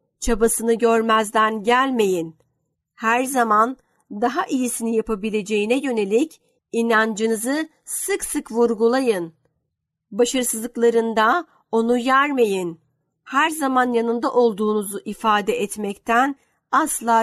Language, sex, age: Turkish, female, 50-69